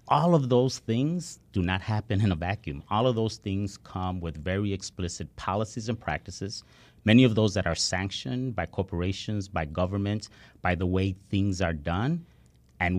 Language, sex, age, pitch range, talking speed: English, male, 30-49, 80-100 Hz, 175 wpm